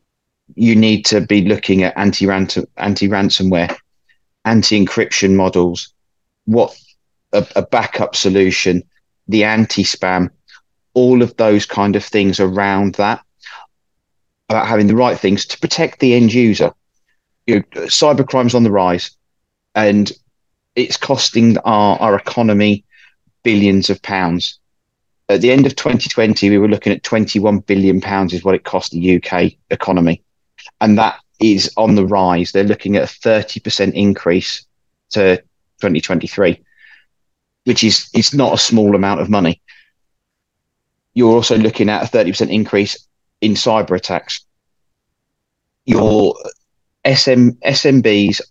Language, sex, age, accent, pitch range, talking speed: English, male, 30-49, British, 95-110 Hz, 130 wpm